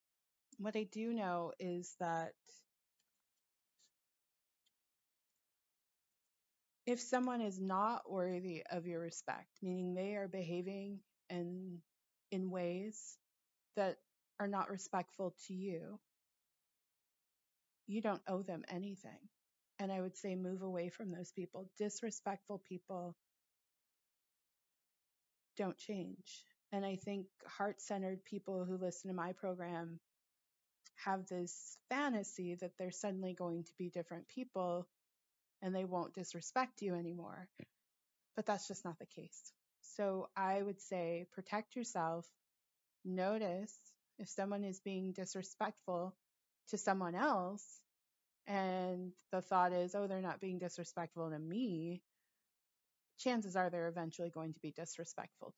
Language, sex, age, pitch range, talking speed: English, female, 30-49, 175-200 Hz, 120 wpm